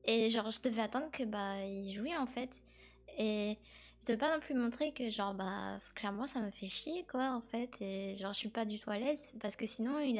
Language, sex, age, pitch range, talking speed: French, female, 20-39, 200-255 Hz, 245 wpm